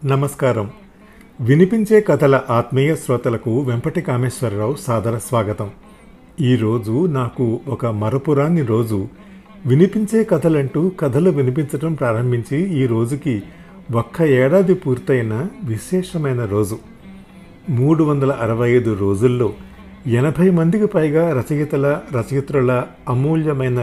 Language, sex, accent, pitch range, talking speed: Telugu, male, native, 120-165 Hz, 85 wpm